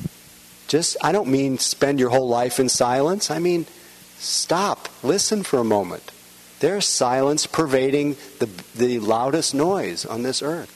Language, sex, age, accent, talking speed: English, male, 50-69, American, 150 wpm